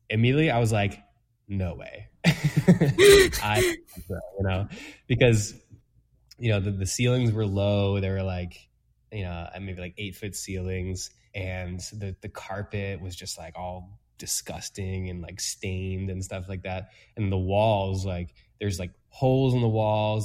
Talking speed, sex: 155 wpm, male